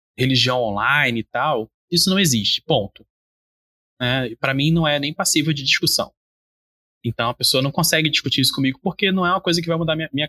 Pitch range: 130-175 Hz